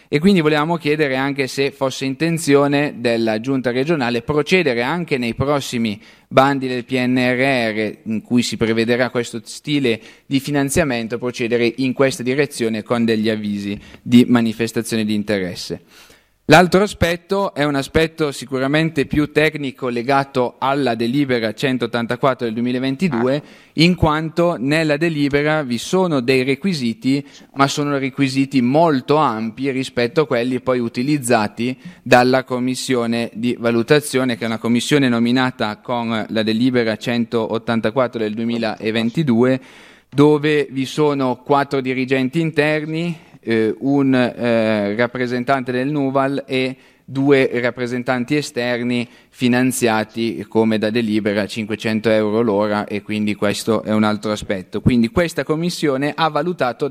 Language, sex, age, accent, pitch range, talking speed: Italian, male, 30-49, native, 115-150 Hz, 125 wpm